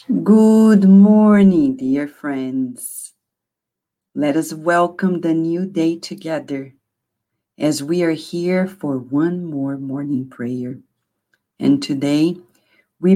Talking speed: 105 wpm